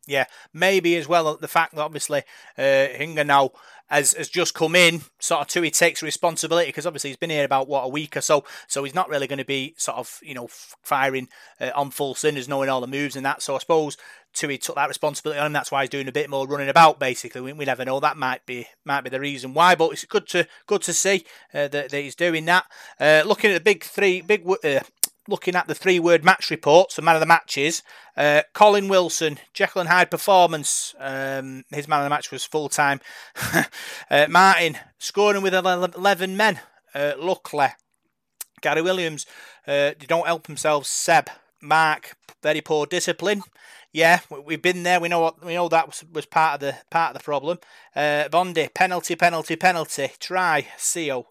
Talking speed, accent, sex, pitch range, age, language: 215 wpm, British, male, 140-175 Hz, 30-49, English